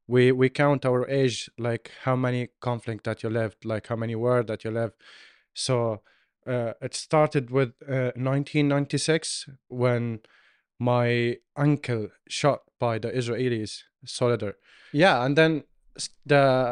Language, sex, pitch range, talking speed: English, male, 115-140 Hz, 145 wpm